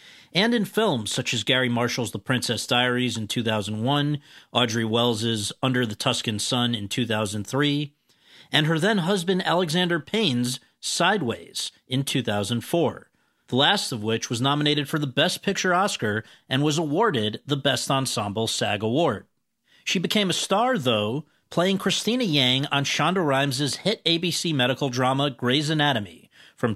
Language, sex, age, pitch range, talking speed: English, male, 40-59, 120-160 Hz, 145 wpm